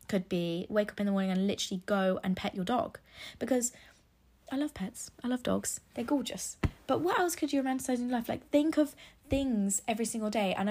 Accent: British